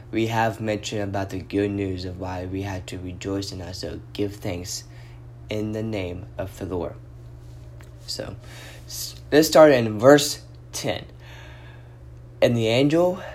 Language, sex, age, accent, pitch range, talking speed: English, male, 20-39, American, 90-115 Hz, 150 wpm